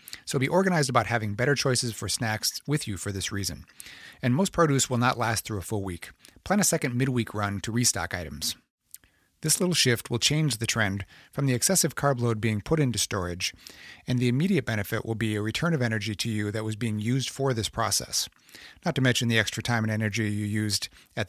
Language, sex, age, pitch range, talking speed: English, male, 40-59, 105-135 Hz, 220 wpm